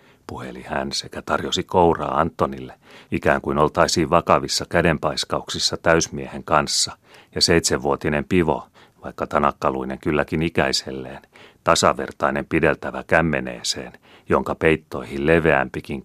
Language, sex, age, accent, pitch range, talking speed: Finnish, male, 40-59, native, 65-80 Hz, 95 wpm